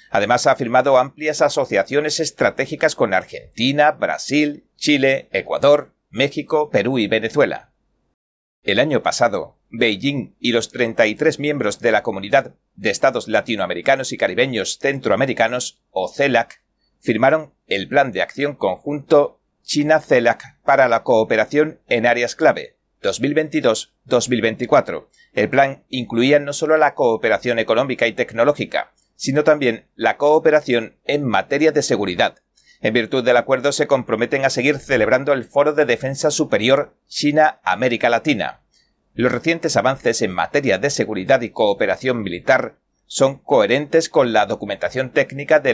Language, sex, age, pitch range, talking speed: Spanish, male, 40-59, 120-150 Hz, 130 wpm